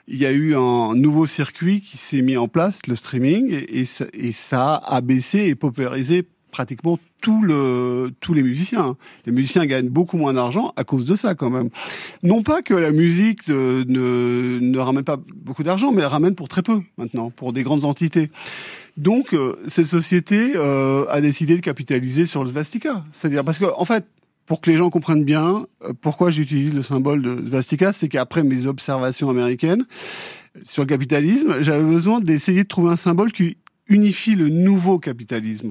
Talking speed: 180 wpm